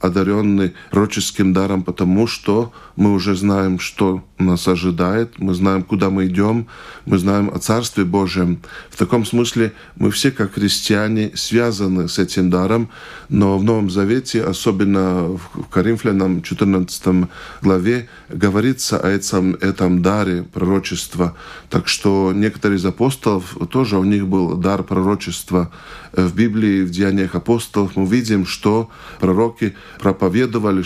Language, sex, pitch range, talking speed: Russian, male, 95-105 Hz, 135 wpm